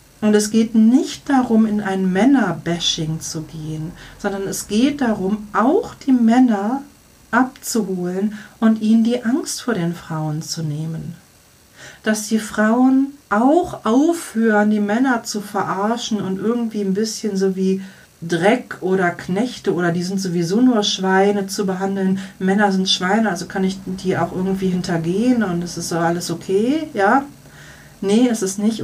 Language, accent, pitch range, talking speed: German, German, 180-235 Hz, 155 wpm